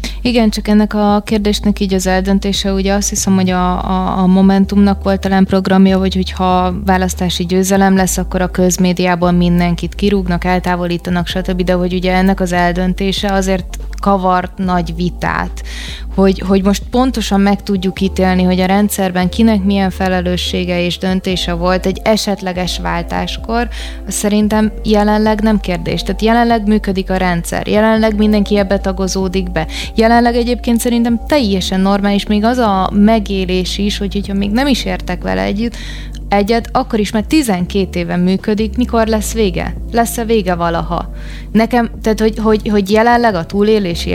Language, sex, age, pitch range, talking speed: Hungarian, female, 20-39, 185-215 Hz, 150 wpm